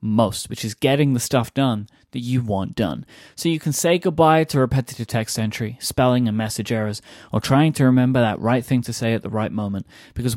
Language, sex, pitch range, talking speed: English, male, 110-140 Hz, 220 wpm